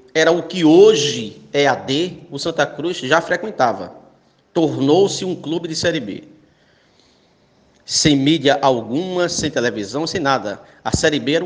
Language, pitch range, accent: Portuguese, 130-175 Hz, Brazilian